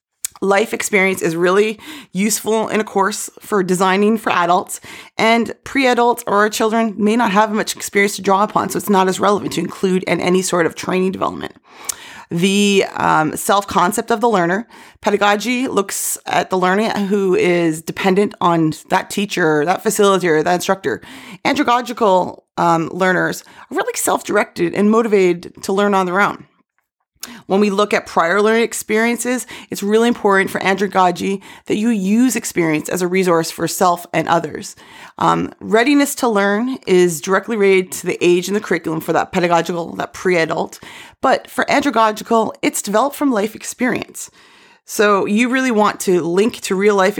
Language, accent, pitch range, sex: English, American, 180-220 Hz, female